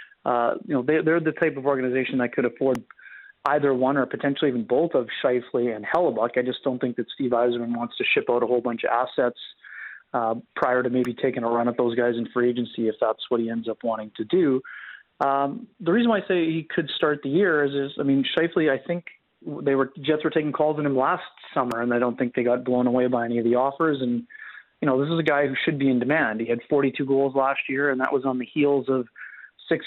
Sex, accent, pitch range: male, American, 120-145 Hz